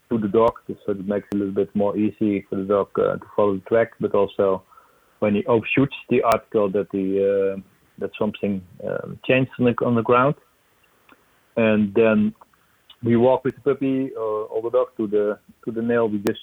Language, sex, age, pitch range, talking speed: English, male, 40-59, 100-115 Hz, 210 wpm